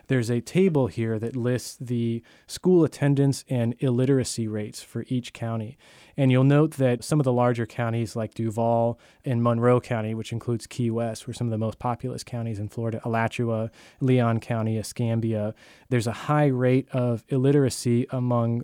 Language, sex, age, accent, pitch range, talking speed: English, male, 20-39, American, 115-130 Hz, 170 wpm